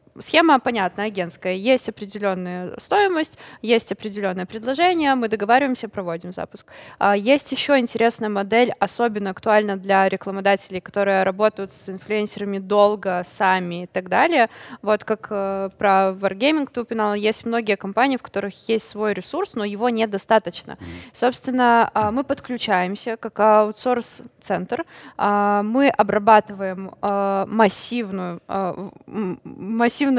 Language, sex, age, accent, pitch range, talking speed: Russian, female, 20-39, native, 195-235 Hz, 105 wpm